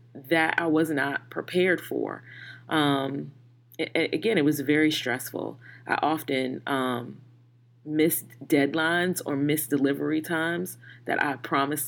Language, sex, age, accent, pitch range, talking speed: English, female, 30-49, American, 135-160 Hz, 125 wpm